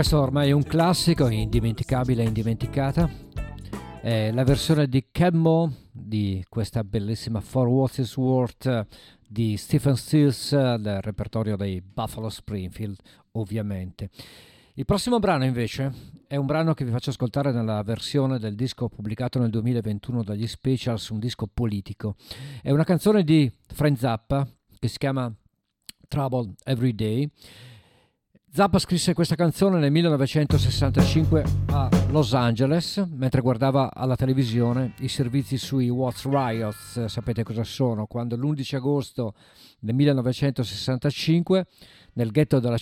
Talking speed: 130 wpm